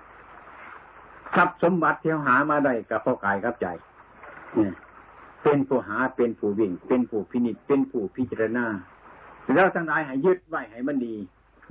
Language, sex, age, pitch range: Thai, male, 60-79, 115-170 Hz